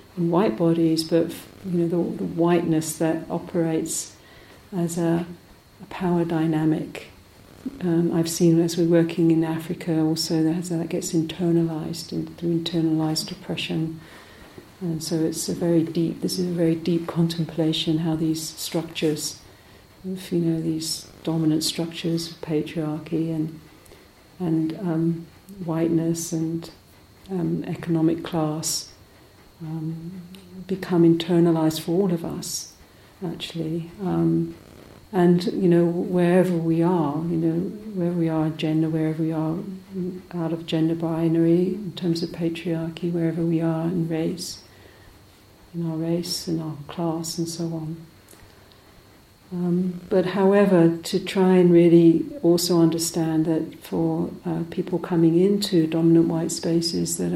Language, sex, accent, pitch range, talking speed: English, female, British, 160-175 Hz, 135 wpm